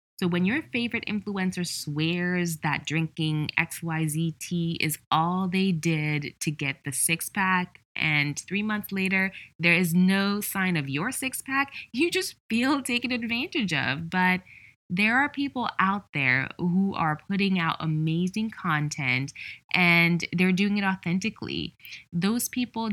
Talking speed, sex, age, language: 150 wpm, female, 20-39, English